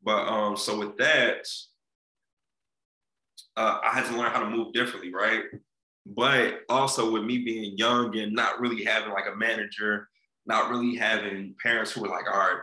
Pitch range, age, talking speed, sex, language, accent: 100-115 Hz, 20-39, 175 wpm, male, English, American